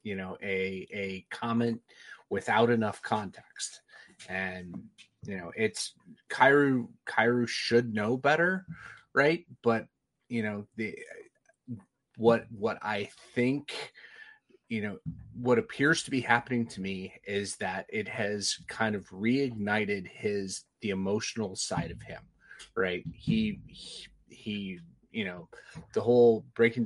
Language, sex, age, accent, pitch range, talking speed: English, male, 30-49, American, 100-125 Hz, 125 wpm